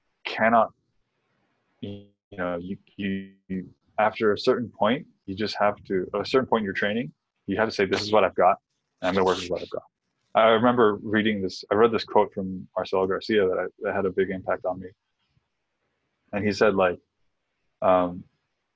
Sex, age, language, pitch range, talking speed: male, 20-39, English, 95-105 Hz, 205 wpm